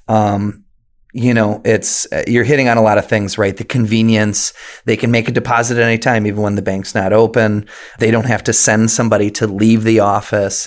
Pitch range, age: 100-115 Hz, 30-49